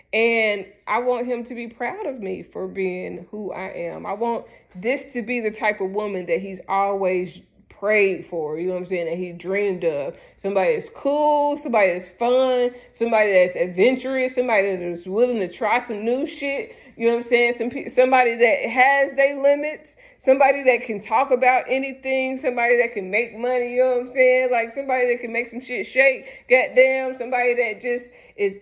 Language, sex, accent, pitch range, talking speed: English, female, American, 175-240 Hz, 195 wpm